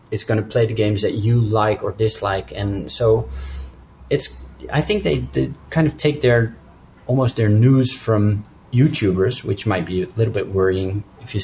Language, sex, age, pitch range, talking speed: English, male, 30-49, 105-125 Hz, 190 wpm